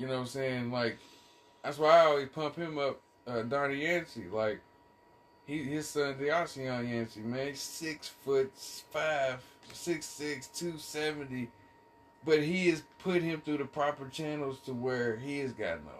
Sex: male